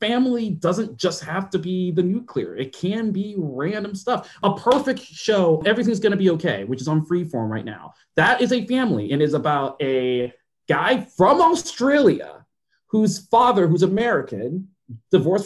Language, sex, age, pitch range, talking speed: English, male, 30-49, 130-195 Hz, 165 wpm